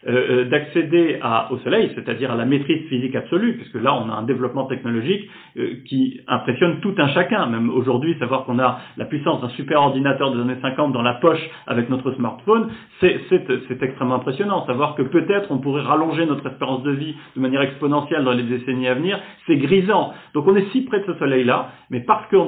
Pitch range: 125-160 Hz